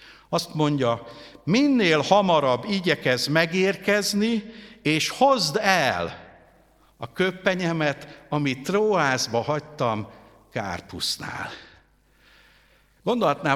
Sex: male